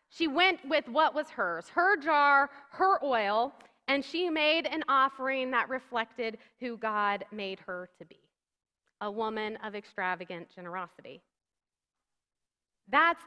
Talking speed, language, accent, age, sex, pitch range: 130 wpm, English, American, 30-49, female, 245-315 Hz